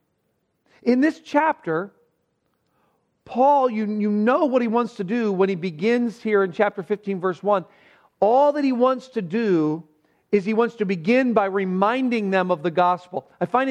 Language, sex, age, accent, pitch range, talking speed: English, male, 40-59, American, 185-240 Hz, 175 wpm